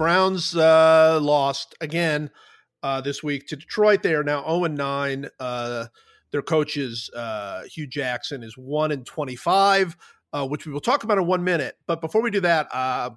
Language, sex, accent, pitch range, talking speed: English, male, American, 140-195 Hz, 165 wpm